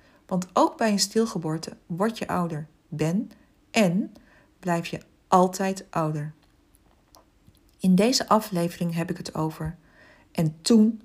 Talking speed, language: 125 wpm, Dutch